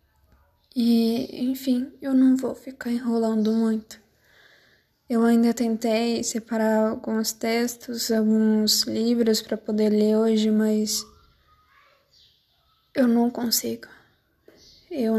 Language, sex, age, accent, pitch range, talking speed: Portuguese, female, 10-29, Brazilian, 215-240 Hz, 100 wpm